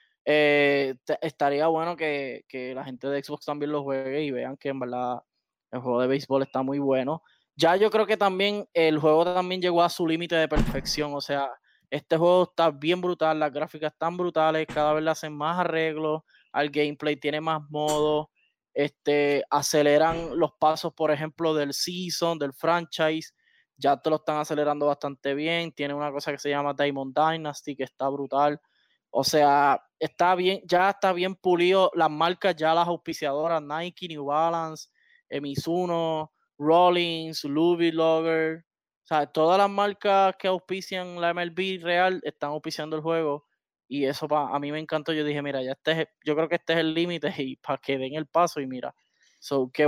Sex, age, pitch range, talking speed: male, 20-39, 145-170 Hz, 180 wpm